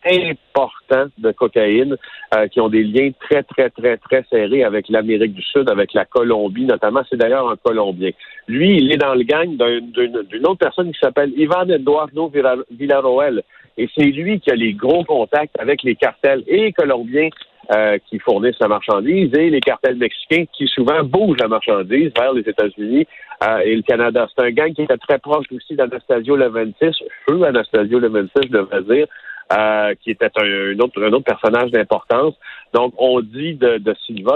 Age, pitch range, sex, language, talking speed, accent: 50-69, 110-165 Hz, male, French, 190 wpm, French